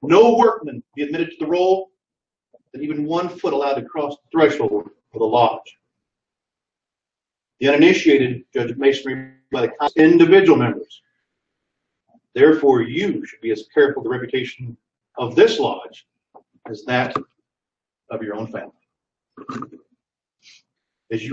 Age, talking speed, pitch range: 50-69, 135 wpm, 135-195 Hz